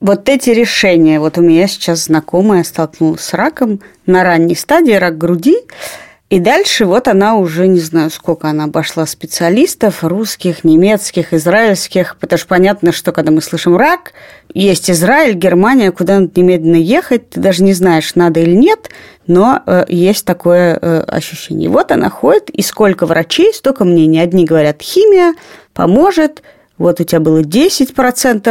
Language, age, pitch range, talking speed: Russian, 30-49, 170-235 Hz, 150 wpm